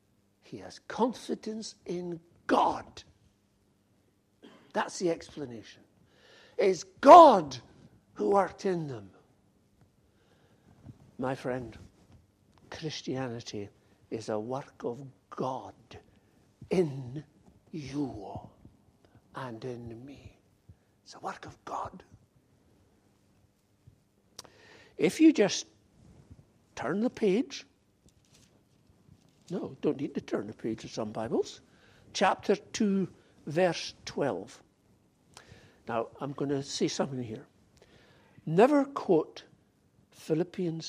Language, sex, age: English, male, 60-79